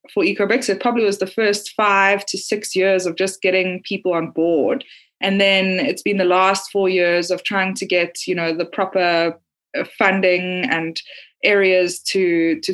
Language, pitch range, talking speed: English, 185-215 Hz, 180 wpm